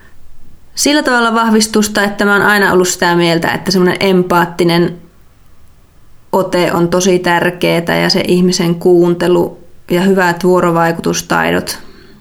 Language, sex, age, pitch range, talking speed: Finnish, female, 20-39, 165-195 Hz, 120 wpm